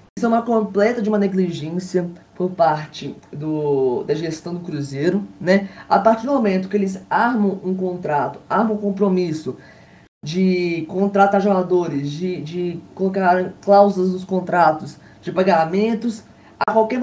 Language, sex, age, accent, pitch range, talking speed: Portuguese, female, 20-39, Brazilian, 165-200 Hz, 135 wpm